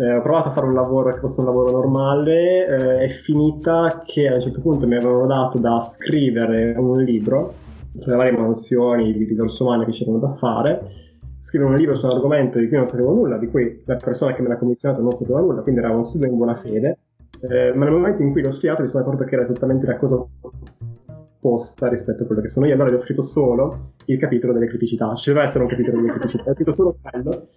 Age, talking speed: 20-39, 240 wpm